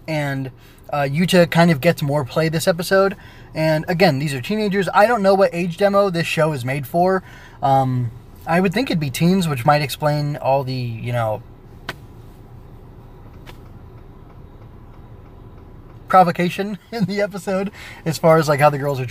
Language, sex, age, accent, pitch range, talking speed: English, male, 20-39, American, 125-170 Hz, 165 wpm